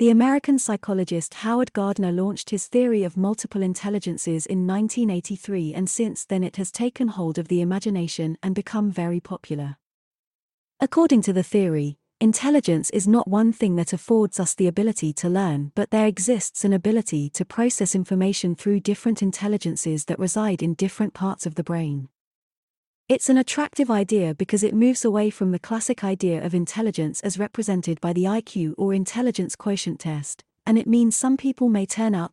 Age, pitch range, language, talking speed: 30-49, 175-220 Hz, English, 175 wpm